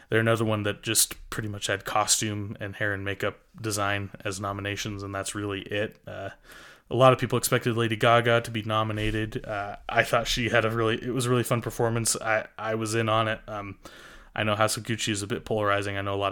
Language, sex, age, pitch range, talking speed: English, male, 20-39, 105-120 Hz, 230 wpm